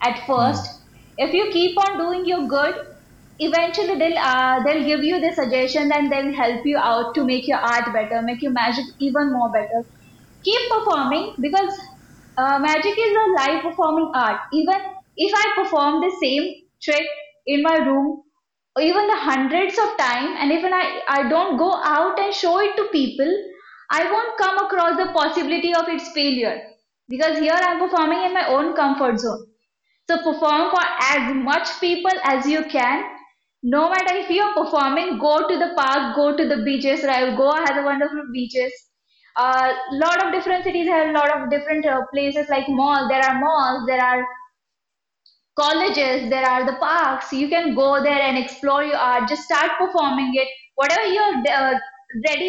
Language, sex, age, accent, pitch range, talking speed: Hindi, female, 20-39, native, 270-350 Hz, 185 wpm